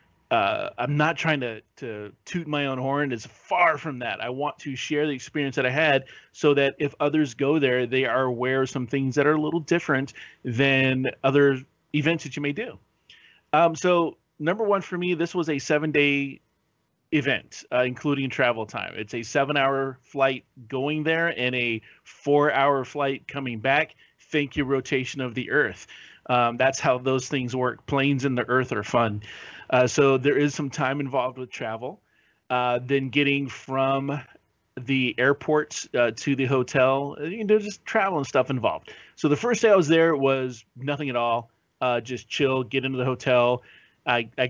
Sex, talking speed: male, 185 wpm